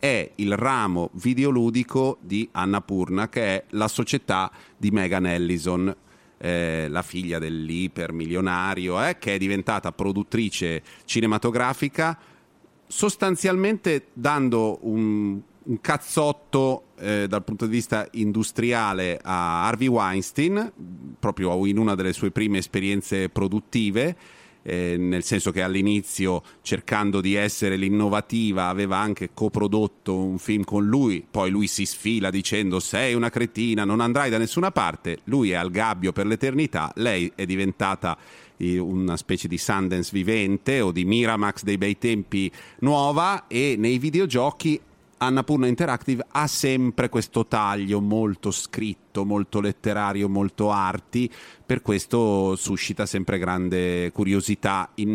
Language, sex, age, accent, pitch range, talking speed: Italian, male, 30-49, native, 95-120 Hz, 130 wpm